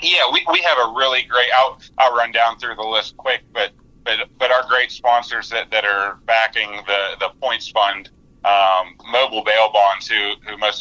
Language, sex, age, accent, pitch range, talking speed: English, male, 30-49, American, 100-115 Hz, 200 wpm